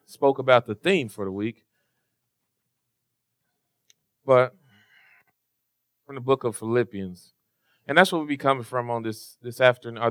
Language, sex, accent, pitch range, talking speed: English, male, American, 105-140 Hz, 150 wpm